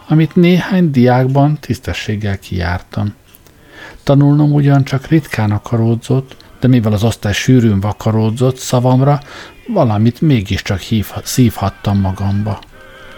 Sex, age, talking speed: male, 60-79, 95 wpm